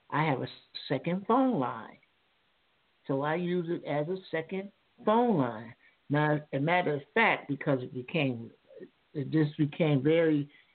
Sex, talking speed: male, 150 wpm